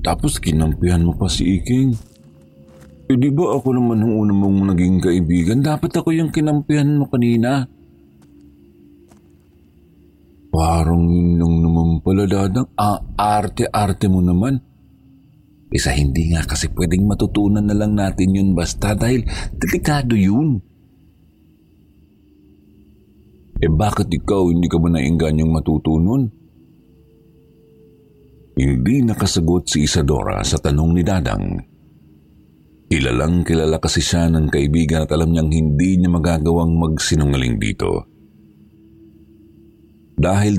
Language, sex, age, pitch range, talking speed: Filipino, male, 50-69, 75-105 Hz, 120 wpm